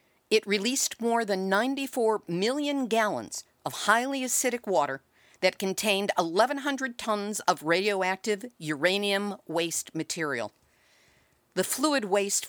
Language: English